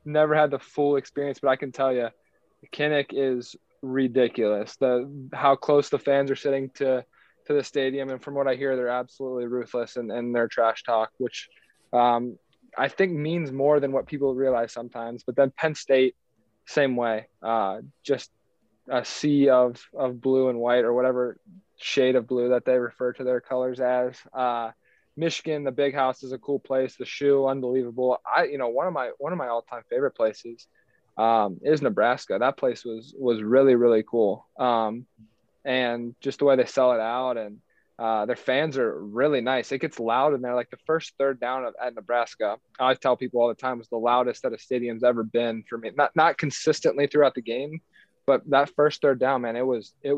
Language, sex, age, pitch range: English, male, 20-39, 120-140 Hz